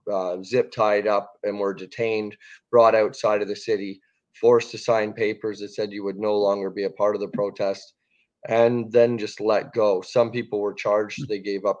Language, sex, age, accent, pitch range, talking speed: English, male, 20-39, American, 105-125 Hz, 205 wpm